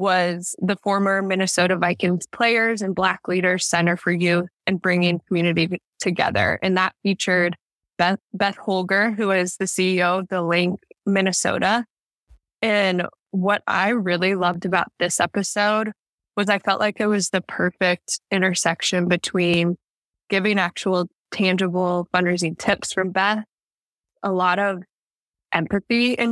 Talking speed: 135 wpm